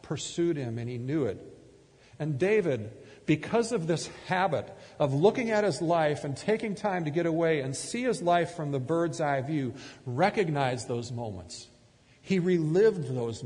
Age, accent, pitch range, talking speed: 50-69, American, 125-170 Hz, 170 wpm